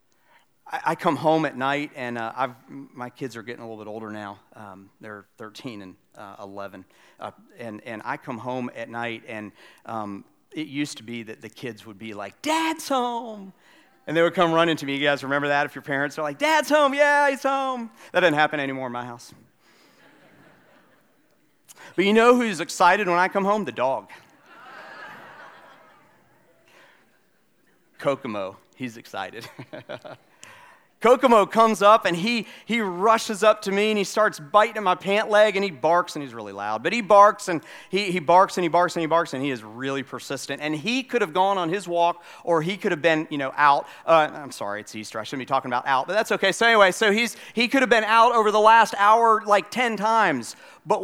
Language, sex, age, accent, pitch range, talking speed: English, male, 40-59, American, 130-215 Hz, 210 wpm